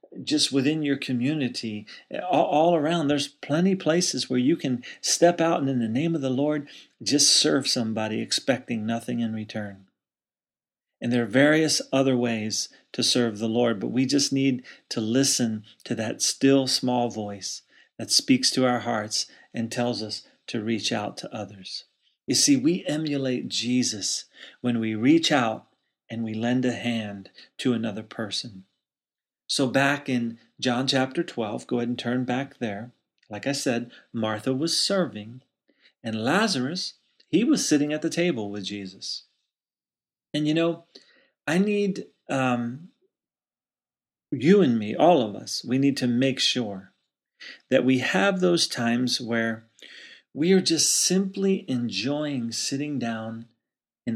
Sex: male